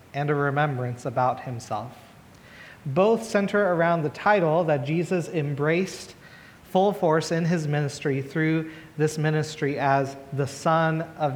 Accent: American